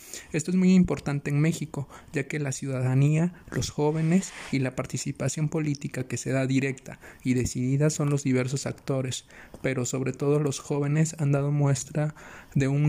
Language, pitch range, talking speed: Spanish, 125-145 Hz, 170 wpm